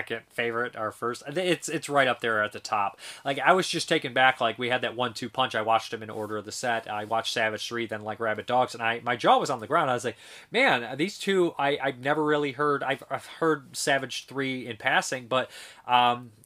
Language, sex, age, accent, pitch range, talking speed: English, male, 30-49, American, 115-150 Hz, 250 wpm